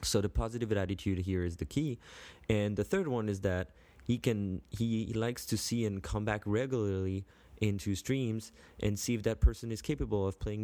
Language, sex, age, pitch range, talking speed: English, male, 20-39, 90-105 Hz, 205 wpm